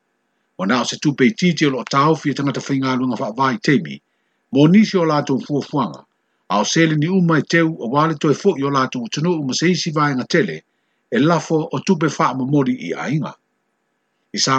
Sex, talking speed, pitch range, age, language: male, 130 wpm, 140-170 Hz, 60-79, Filipino